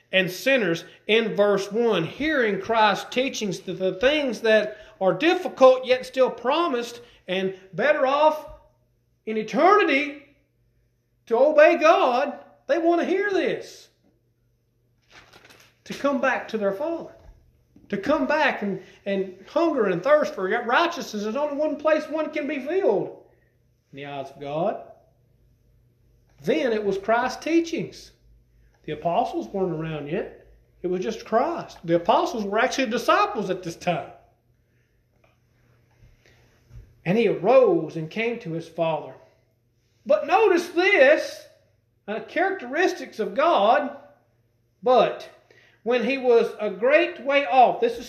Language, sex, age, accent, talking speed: English, male, 40-59, American, 130 wpm